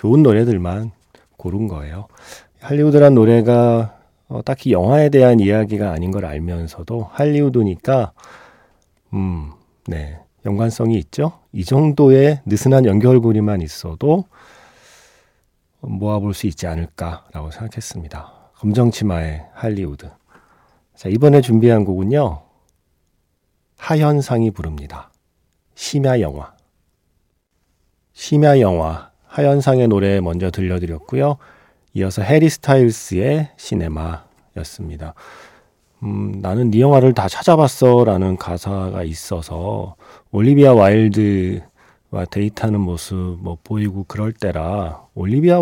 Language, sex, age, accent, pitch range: Korean, male, 40-59, native, 90-130 Hz